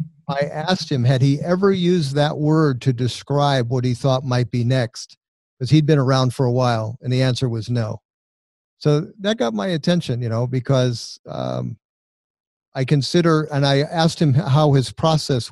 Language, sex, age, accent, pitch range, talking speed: English, male, 50-69, American, 125-150 Hz, 180 wpm